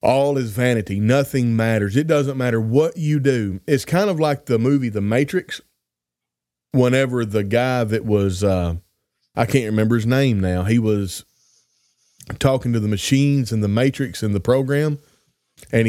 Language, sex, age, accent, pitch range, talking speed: English, male, 30-49, American, 105-135 Hz, 165 wpm